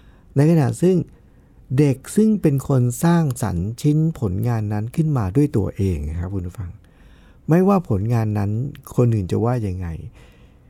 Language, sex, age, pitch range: Thai, male, 60-79, 110-165 Hz